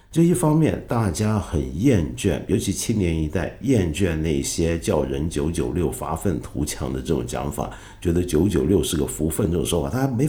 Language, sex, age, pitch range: Chinese, male, 50-69, 75-105 Hz